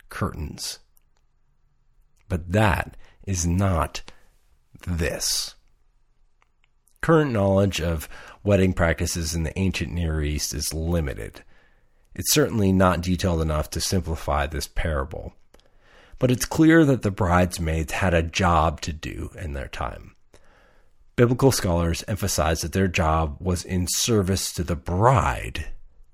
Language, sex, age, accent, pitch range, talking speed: English, male, 40-59, American, 80-100 Hz, 120 wpm